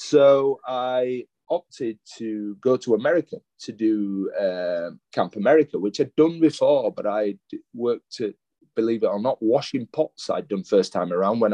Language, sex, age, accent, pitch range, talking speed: English, male, 30-49, British, 110-145 Hz, 165 wpm